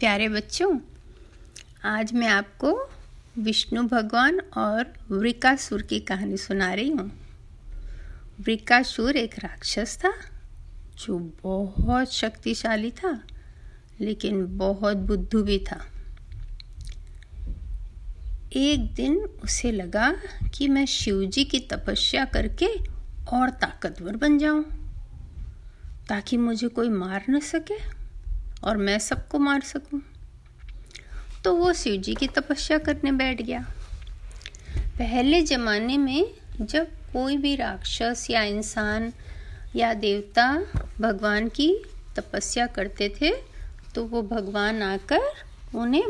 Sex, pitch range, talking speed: female, 205-285 Hz, 110 wpm